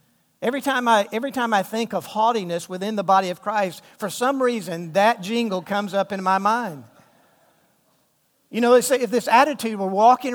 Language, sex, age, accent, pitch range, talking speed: English, male, 50-69, American, 195-245 Hz, 170 wpm